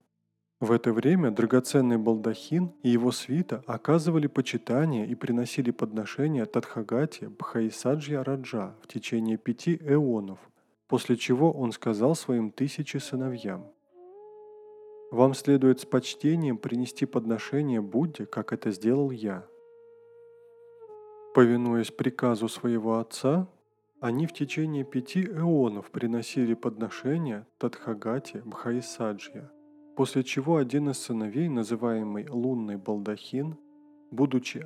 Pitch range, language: 115-165 Hz, Russian